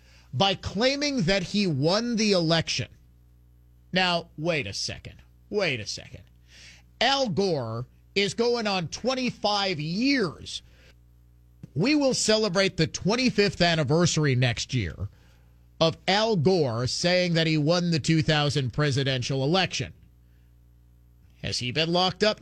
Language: English